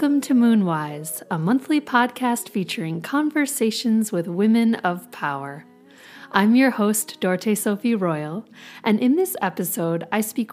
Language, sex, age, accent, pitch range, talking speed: English, female, 30-49, American, 175-235 Hz, 135 wpm